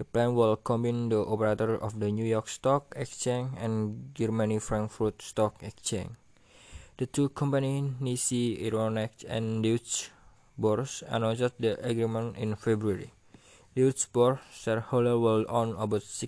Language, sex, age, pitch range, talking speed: Indonesian, male, 20-39, 110-120 Hz, 130 wpm